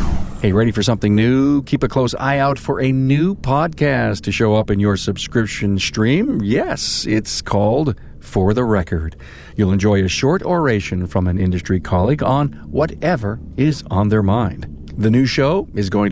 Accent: American